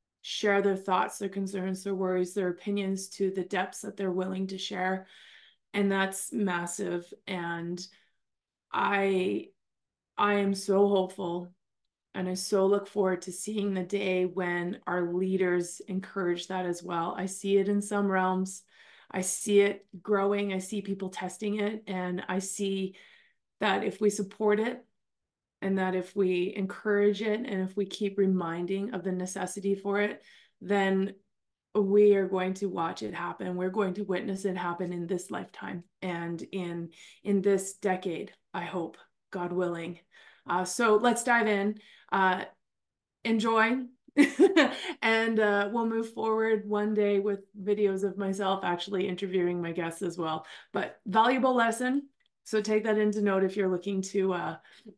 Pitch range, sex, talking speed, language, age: 185-205 Hz, female, 155 wpm, English, 20-39